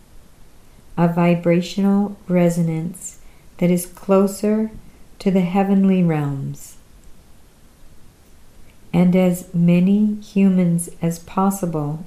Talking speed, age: 80 wpm, 50-69